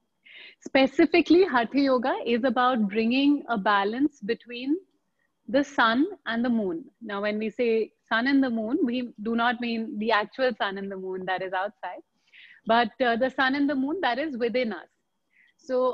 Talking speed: 175 wpm